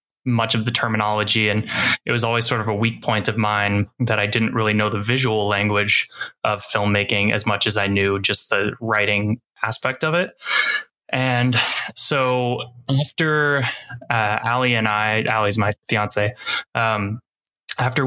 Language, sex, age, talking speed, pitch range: English, male, 20-39, 160 wpm, 105-120 Hz